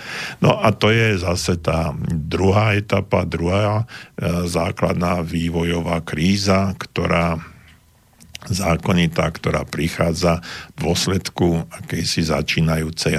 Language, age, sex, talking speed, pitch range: Slovak, 50-69, male, 90 wpm, 80-95 Hz